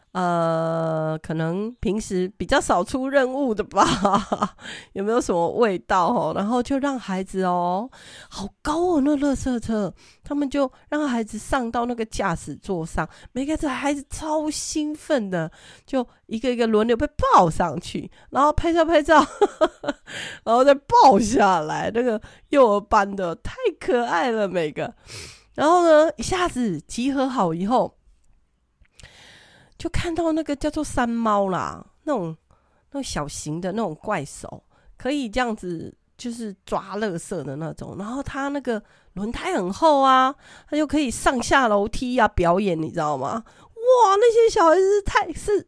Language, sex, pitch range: Chinese, female, 190-290 Hz